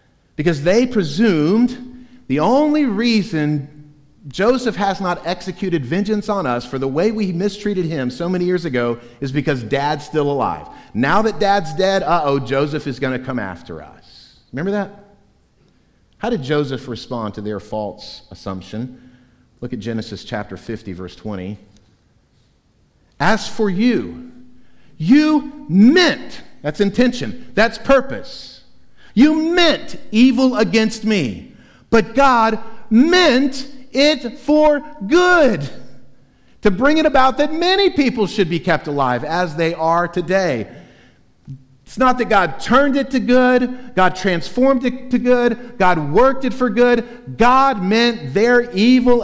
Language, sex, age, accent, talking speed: English, male, 50-69, American, 140 wpm